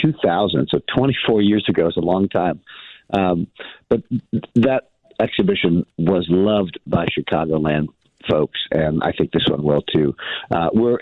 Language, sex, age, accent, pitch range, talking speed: English, male, 50-69, American, 85-105 Hz, 145 wpm